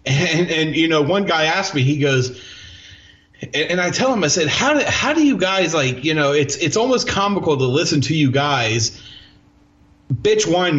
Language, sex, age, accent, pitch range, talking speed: English, male, 30-49, American, 130-185 Hz, 200 wpm